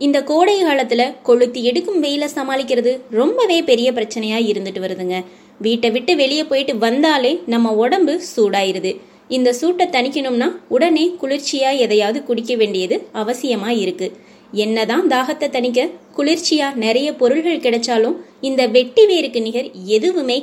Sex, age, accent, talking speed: female, 20-39, native, 120 wpm